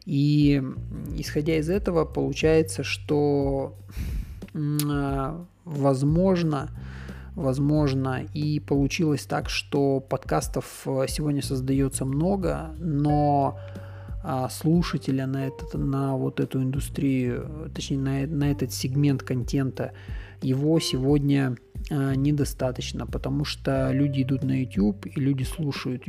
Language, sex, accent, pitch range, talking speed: Russian, male, native, 125-145 Hz, 95 wpm